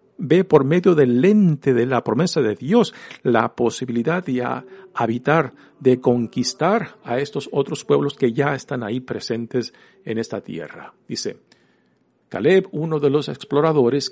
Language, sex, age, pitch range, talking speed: Spanish, male, 50-69, 125-205 Hz, 145 wpm